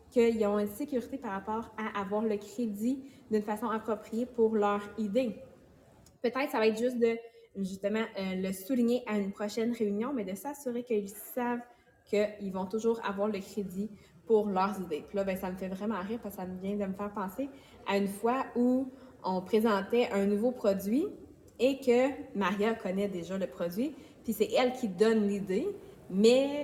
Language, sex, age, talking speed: English, female, 20-39, 190 wpm